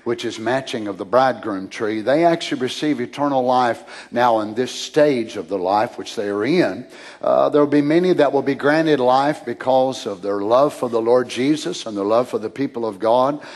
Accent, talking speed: American, 210 wpm